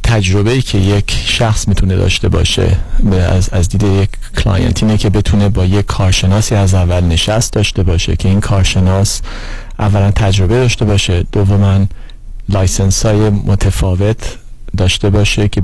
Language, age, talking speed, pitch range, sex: Persian, 40-59, 130 wpm, 95-110 Hz, male